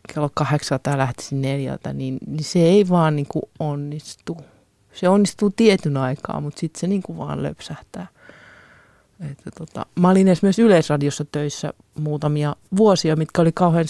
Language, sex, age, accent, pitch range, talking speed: Finnish, male, 30-49, native, 150-175 Hz, 145 wpm